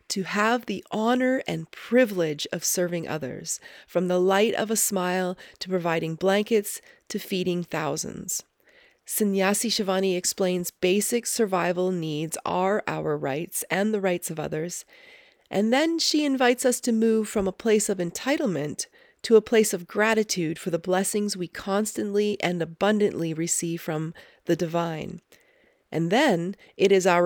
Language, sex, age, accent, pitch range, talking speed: English, female, 30-49, American, 170-215 Hz, 150 wpm